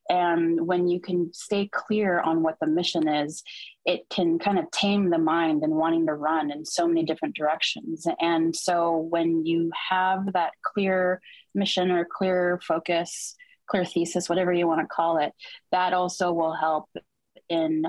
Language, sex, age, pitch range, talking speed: English, female, 20-39, 160-180 Hz, 170 wpm